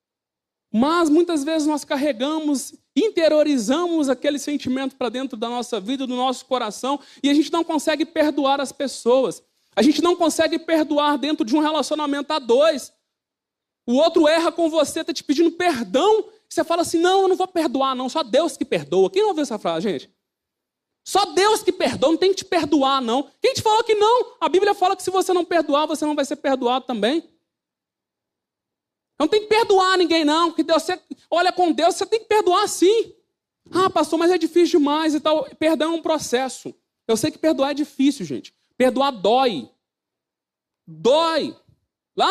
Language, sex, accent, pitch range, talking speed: Portuguese, male, Brazilian, 270-345 Hz, 185 wpm